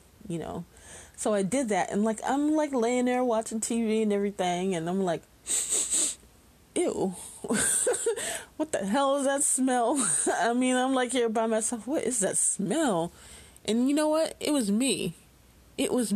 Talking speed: 170 wpm